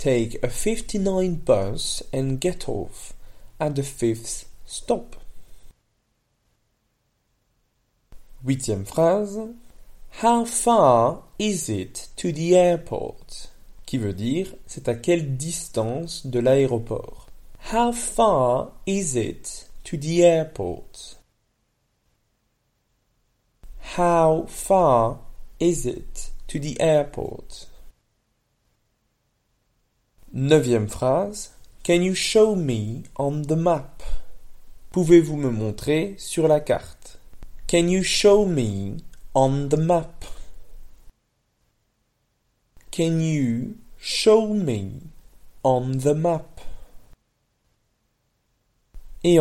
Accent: French